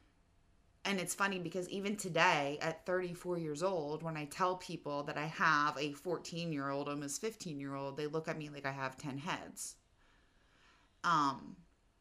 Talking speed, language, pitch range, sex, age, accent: 175 wpm, English, 145-205 Hz, female, 20-39, American